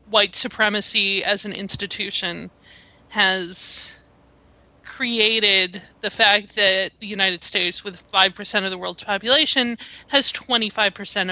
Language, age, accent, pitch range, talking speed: English, 20-39, American, 195-240 Hz, 110 wpm